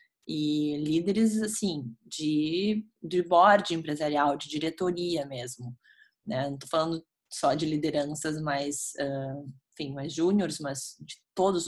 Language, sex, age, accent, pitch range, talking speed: Portuguese, female, 20-39, Brazilian, 150-205 Hz, 125 wpm